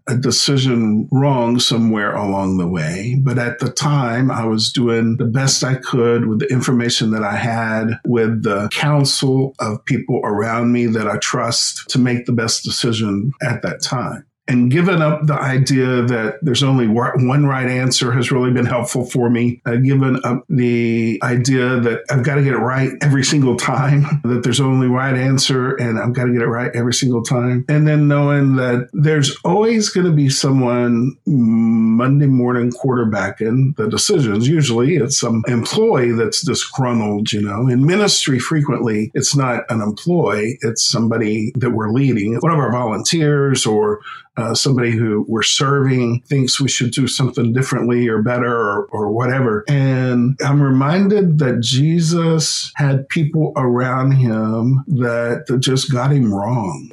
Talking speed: 170 wpm